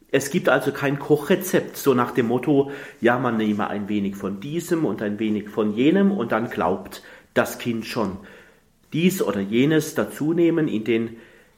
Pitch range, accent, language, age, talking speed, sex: 110-145 Hz, German, German, 40-59, 170 wpm, male